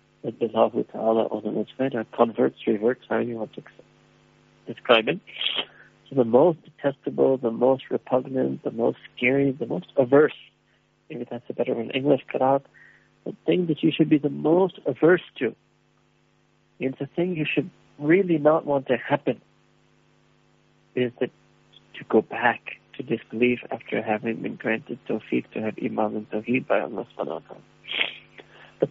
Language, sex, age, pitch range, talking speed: English, male, 60-79, 115-145 Hz, 145 wpm